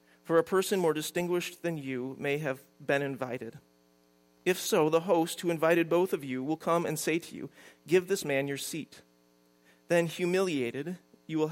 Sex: male